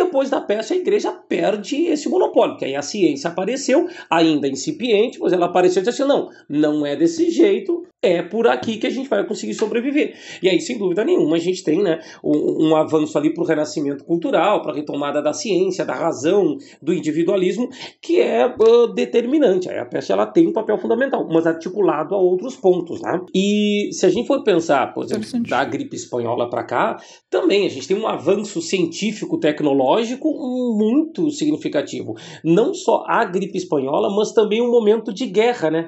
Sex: male